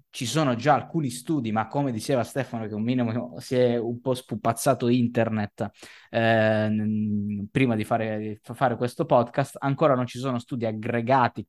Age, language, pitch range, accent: 20-39, Italian, 110-140 Hz, native